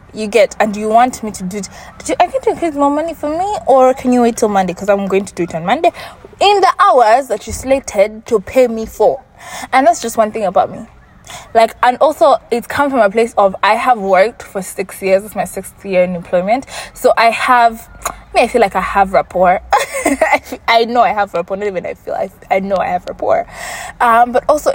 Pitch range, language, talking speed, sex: 195-250 Hz, English, 240 wpm, female